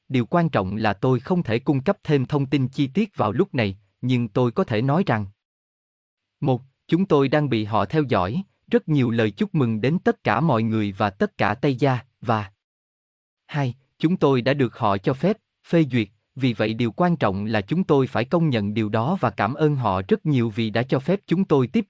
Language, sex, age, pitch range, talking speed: Vietnamese, male, 20-39, 110-155 Hz, 225 wpm